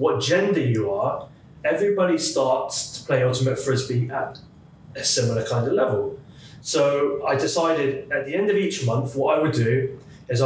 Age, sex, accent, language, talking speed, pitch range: 20-39, male, British, English, 170 wpm, 125-150 Hz